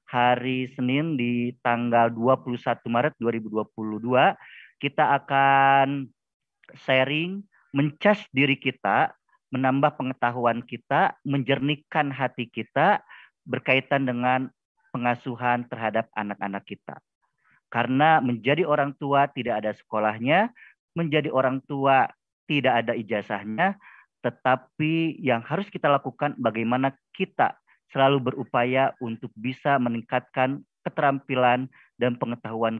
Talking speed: 95 wpm